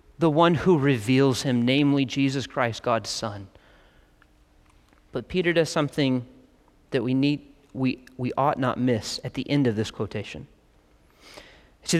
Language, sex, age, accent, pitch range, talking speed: English, male, 30-49, American, 140-185 Hz, 145 wpm